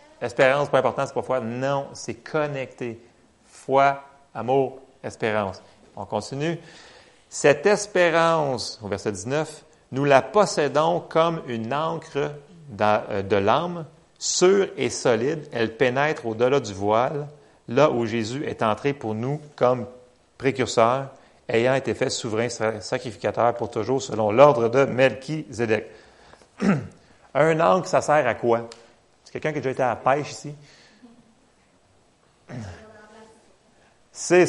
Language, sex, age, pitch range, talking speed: French, male, 40-59, 115-155 Hz, 125 wpm